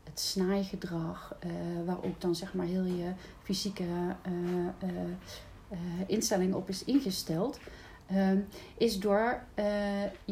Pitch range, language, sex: 190-230 Hz, Dutch, female